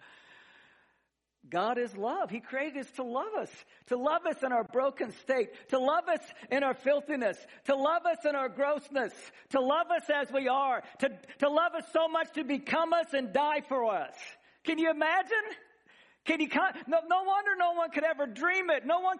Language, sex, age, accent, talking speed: English, male, 50-69, American, 200 wpm